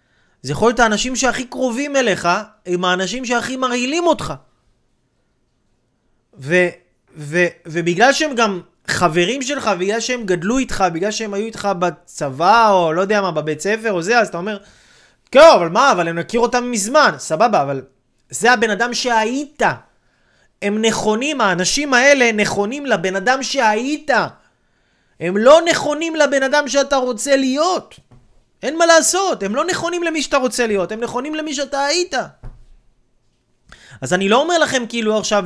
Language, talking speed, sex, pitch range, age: Hebrew, 150 wpm, male, 170-245 Hz, 30-49